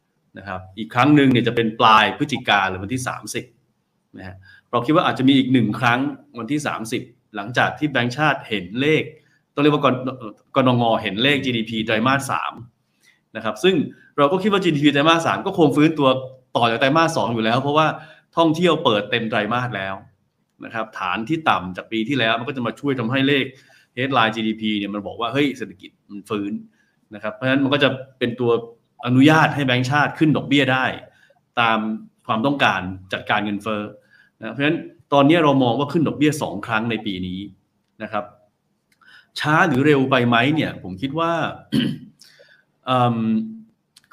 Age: 20-39